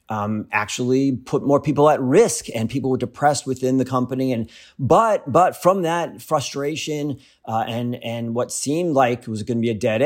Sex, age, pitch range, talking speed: male, 30-49, 120-145 Hz, 195 wpm